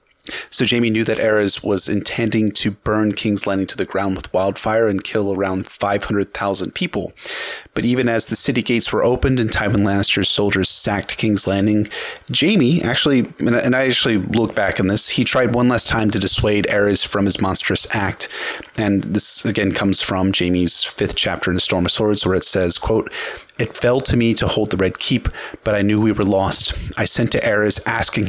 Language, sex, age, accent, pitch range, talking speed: English, male, 30-49, American, 100-115 Hz, 200 wpm